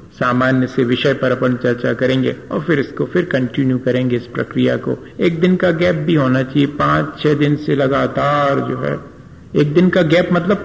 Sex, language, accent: male, Hindi, native